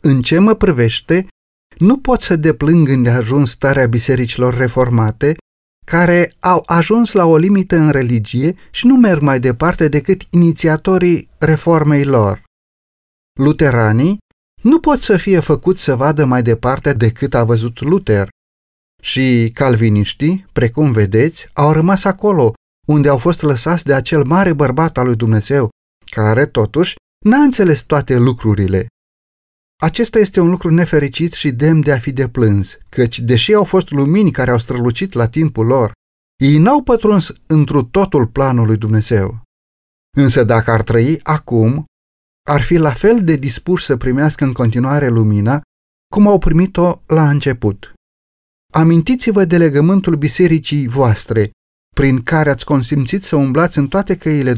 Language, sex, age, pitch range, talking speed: Romanian, male, 30-49, 115-170 Hz, 145 wpm